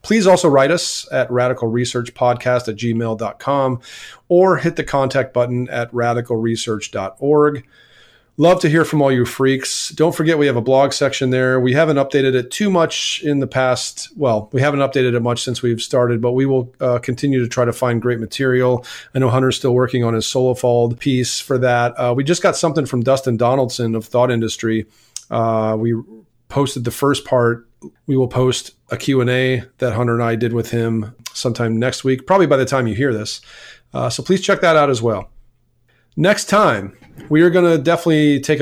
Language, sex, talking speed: English, male, 195 wpm